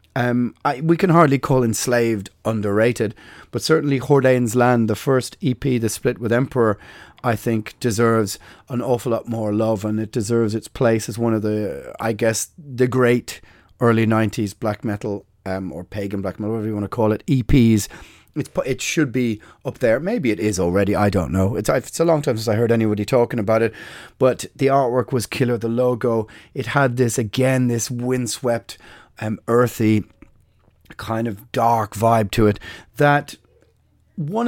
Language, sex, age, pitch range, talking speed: English, male, 30-49, 110-130 Hz, 180 wpm